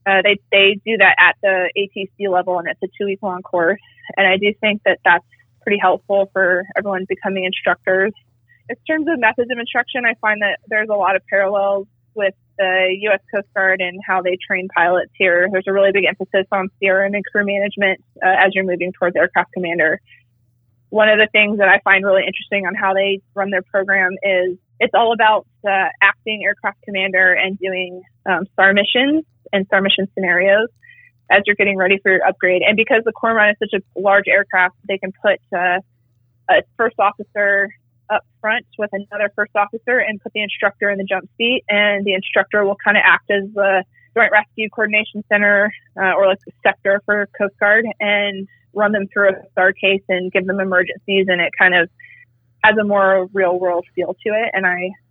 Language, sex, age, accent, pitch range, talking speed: English, female, 20-39, American, 185-205 Hz, 200 wpm